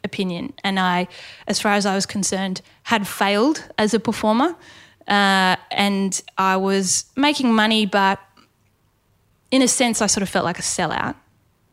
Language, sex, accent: English, female, Australian